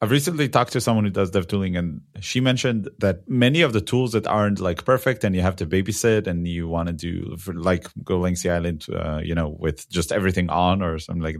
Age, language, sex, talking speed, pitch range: 30-49, English, male, 235 wpm, 90-115 Hz